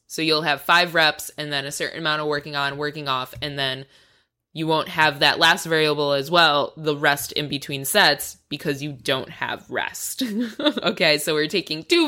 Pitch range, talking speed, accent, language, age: 150-175 Hz, 200 wpm, American, English, 20-39